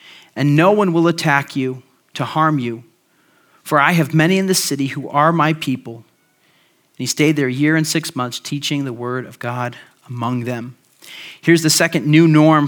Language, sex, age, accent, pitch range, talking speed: English, male, 40-59, American, 140-170 Hz, 195 wpm